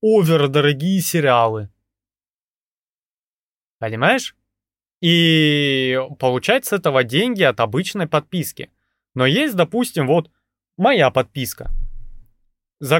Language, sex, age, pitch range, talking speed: Russian, male, 20-39, 115-175 Hz, 90 wpm